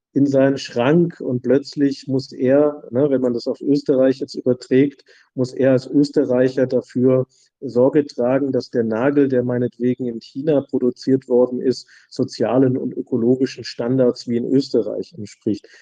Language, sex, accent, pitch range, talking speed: German, male, German, 125-140 Hz, 150 wpm